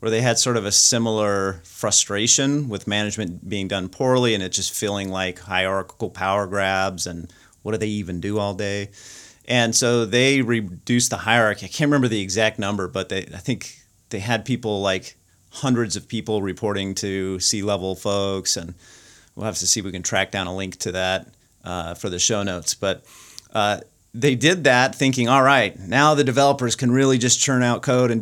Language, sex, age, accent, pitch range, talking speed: English, male, 30-49, American, 95-120 Hz, 200 wpm